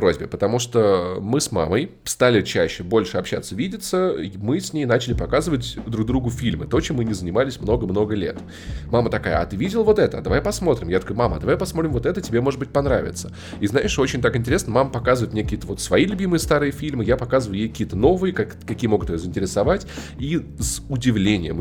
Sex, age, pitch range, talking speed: male, 20-39, 100-135 Hz, 205 wpm